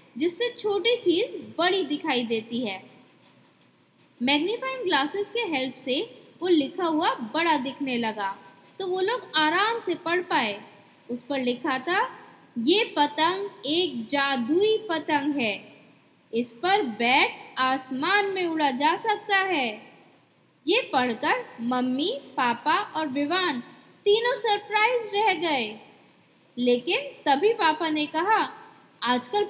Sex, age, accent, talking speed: female, 20-39, native, 120 wpm